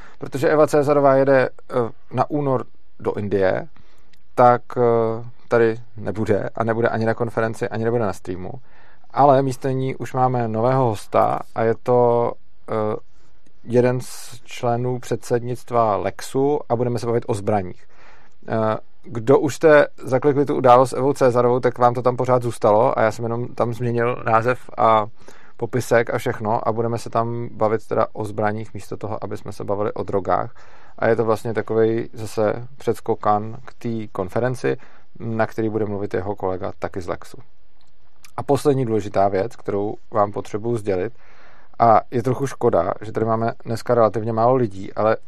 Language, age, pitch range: Czech, 40-59, 110-125 Hz